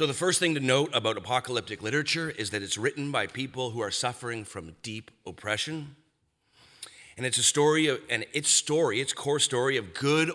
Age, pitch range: 30-49, 100-130 Hz